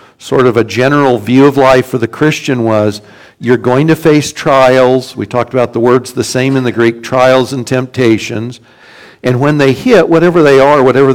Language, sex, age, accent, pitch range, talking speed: English, male, 60-79, American, 125-150 Hz, 200 wpm